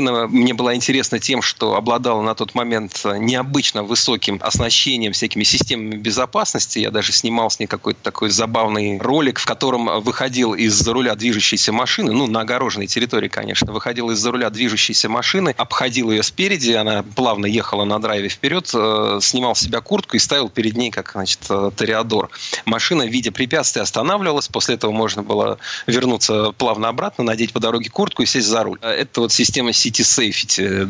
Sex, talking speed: male, 165 wpm